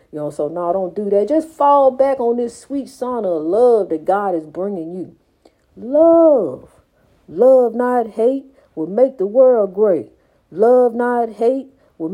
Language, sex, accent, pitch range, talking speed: English, female, American, 185-255 Hz, 170 wpm